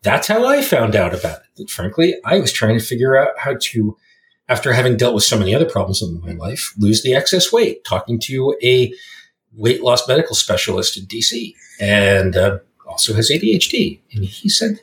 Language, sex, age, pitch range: English, male, 40-59, 100-150 Hz